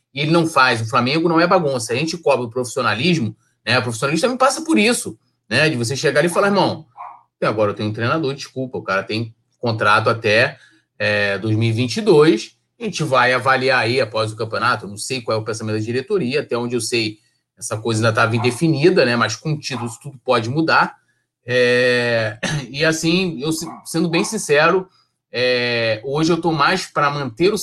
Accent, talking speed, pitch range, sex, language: Brazilian, 190 wpm, 115-165 Hz, male, Portuguese